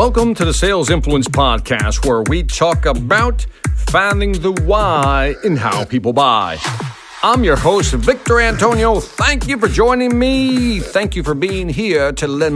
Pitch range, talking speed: 120-200 Hz, 160 wpm